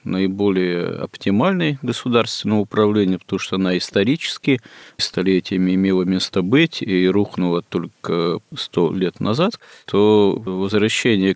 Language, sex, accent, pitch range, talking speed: Russian, male, native, 90-105 Hz, 105 wpm